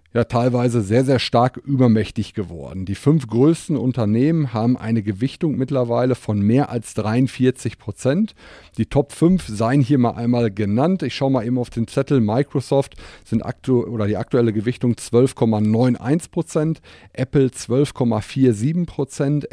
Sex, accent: male, German